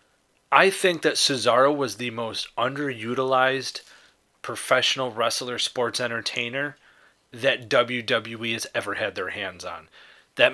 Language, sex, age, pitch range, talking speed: English, male, 30-49, 115-140 Hz, 120 wpm